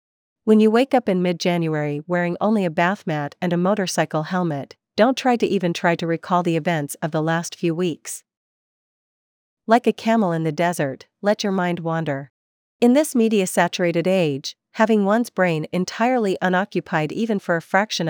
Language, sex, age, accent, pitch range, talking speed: English, female, 40-59, American, 165-200 Hz, 170 wpm